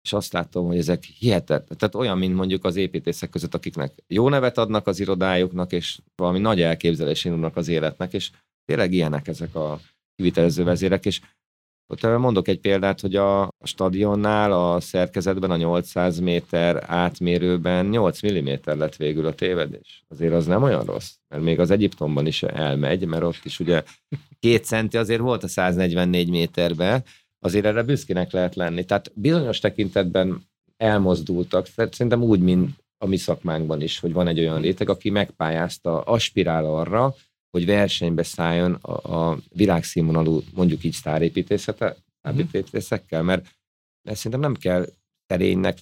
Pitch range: 85-105 Hz